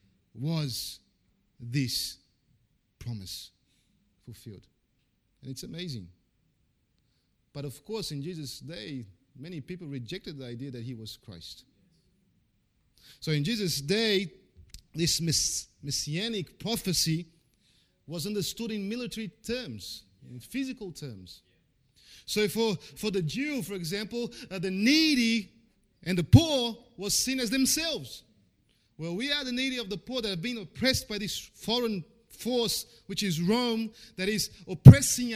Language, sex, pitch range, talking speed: English, male, 150-245 Hz, 130 wpm